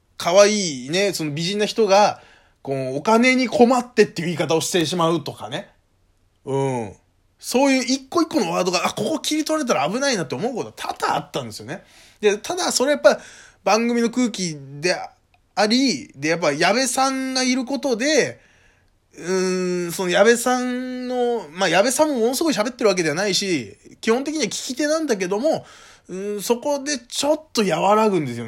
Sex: male